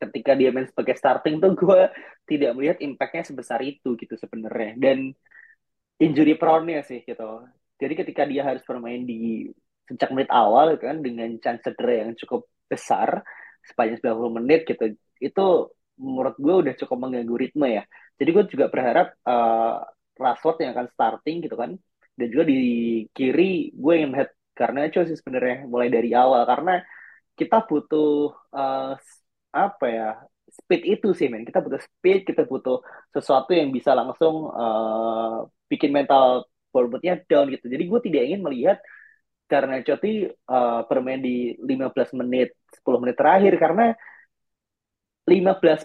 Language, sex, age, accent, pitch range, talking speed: Indonesian, male, 20-39, native, 120-160 Hz, 150 wpm